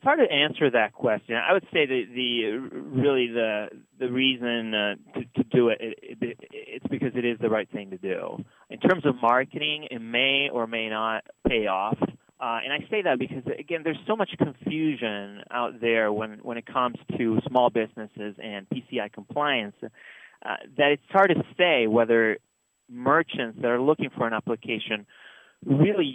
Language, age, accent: English, 30-49, American